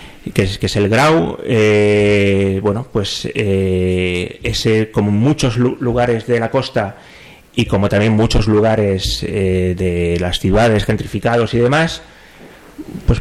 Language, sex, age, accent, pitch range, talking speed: Spanish, male, 30-49, Spanish, 100-120 Hz, 140 wpm